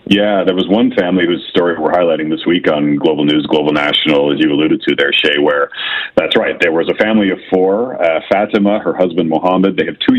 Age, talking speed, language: 40-59, 230 wpm, English